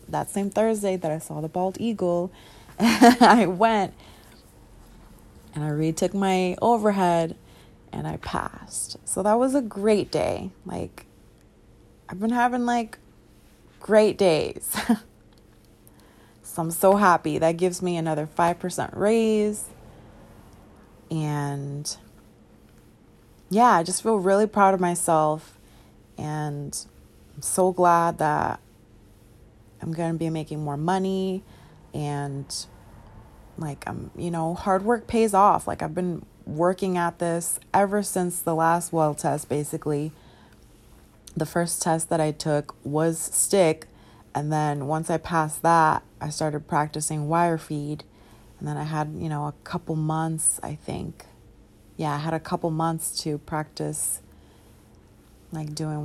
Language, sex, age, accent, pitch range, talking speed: English, female, 20-39, American, 140-180 Hz, 135 wpm